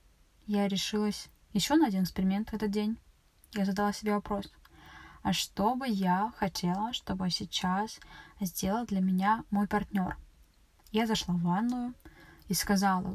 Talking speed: 140 wpm